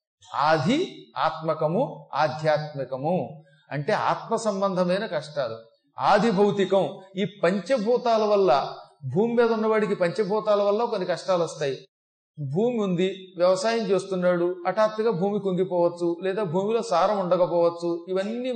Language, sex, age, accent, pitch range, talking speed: Telugu, male, 40-59, native, 175-225 Hz, 95 wpm